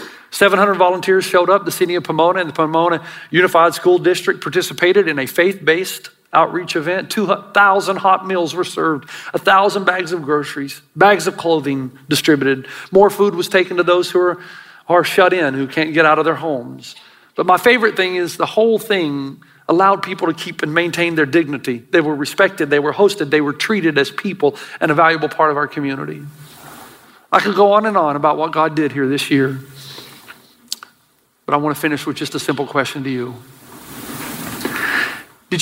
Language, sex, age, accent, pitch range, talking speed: English, male, 50-69, American, 145-185 Hz, 185 wpm